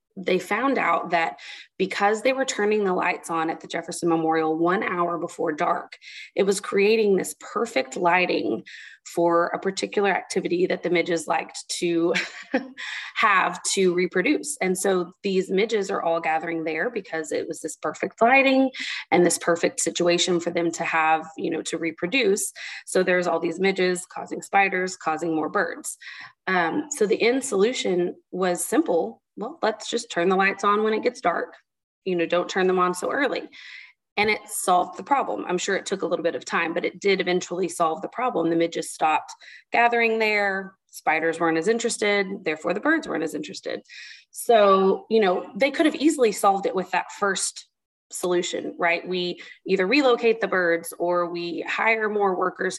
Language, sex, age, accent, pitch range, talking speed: English, female, 20-39, American, 170-205 Hz, 180 wpm